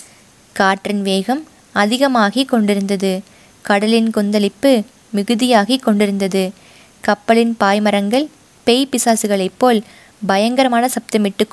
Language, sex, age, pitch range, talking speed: Tamil, female, 20-39, 200-250 Hz, 75 wpm